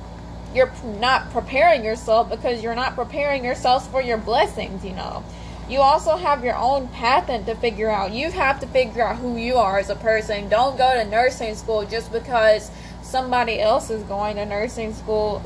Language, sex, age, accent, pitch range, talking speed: English, female, 10-29, American, 215-255 Hz, 185 wpm